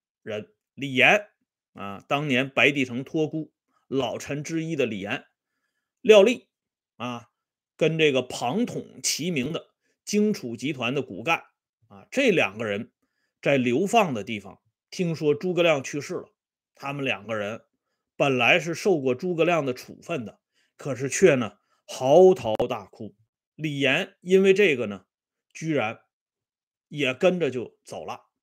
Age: 30-49